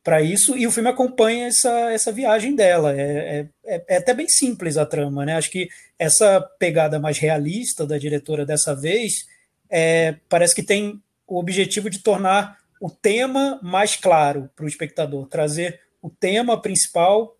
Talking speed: 165 wpm